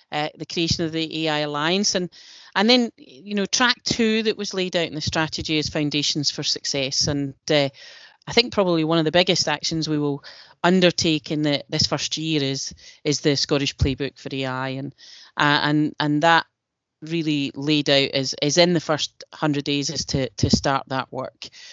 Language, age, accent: English, 30-49, British